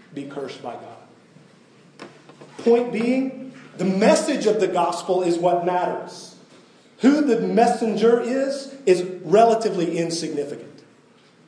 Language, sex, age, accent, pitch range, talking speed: English, male, 40-59, American, 160-215 Hz, 110 wpm